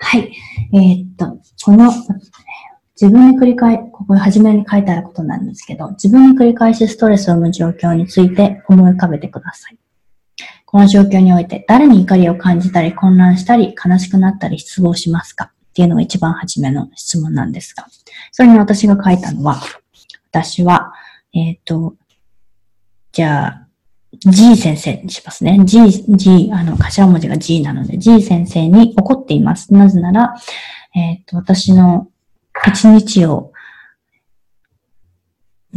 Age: 20-39